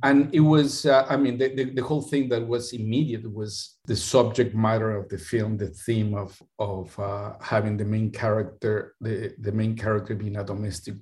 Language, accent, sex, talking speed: English, Mexican, male, 200 wpm